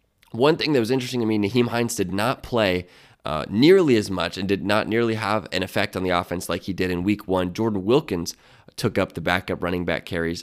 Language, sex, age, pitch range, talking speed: English, male, 20-39, 90-115 Hz, 235 wpm